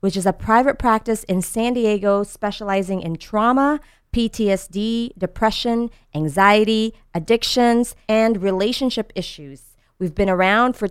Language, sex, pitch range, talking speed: English, female, 180-235 Hz, 120 wpm